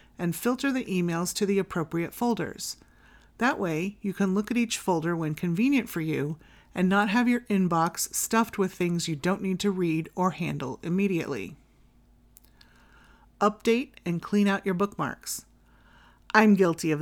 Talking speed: 160 wpm